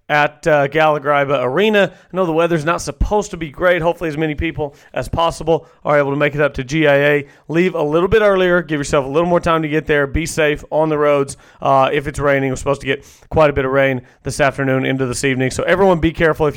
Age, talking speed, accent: 30-49, 250 wpm, American